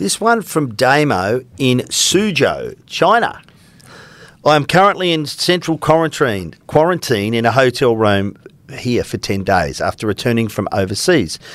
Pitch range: 100-140 Hz